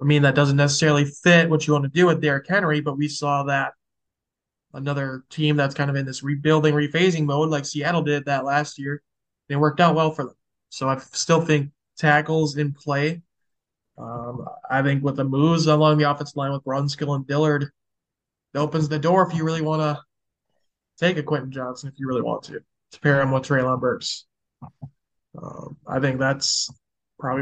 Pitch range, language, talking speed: 135-150 Hz, English, 195 wpm